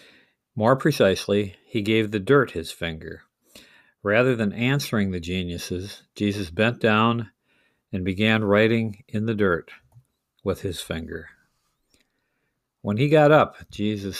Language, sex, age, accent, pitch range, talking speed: English, male, 50-69, American, 100-125 Hz, 125 wpm